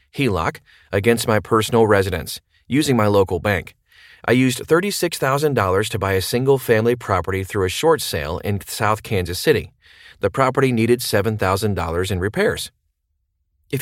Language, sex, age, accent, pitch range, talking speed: English, male, 30-49, American, 95-125 Hz, 140 wpm